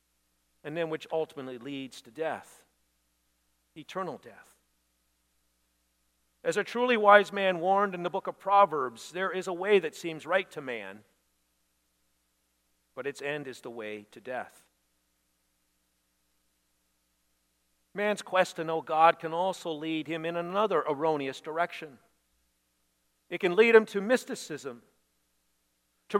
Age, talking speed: 50-69, 130 wpm